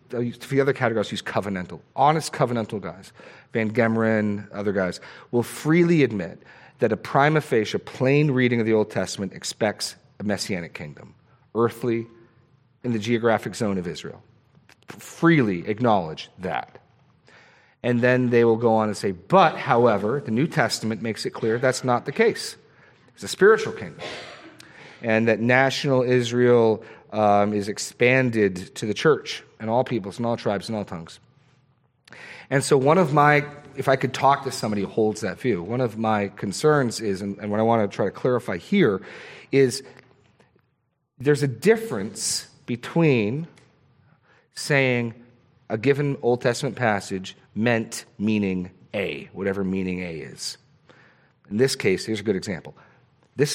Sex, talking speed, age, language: male, 155 wpm, 40-59, English